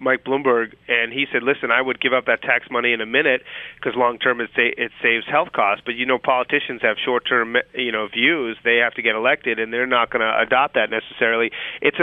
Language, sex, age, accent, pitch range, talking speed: English, male, 30-49, American, 115-130 Hz, 235 wpm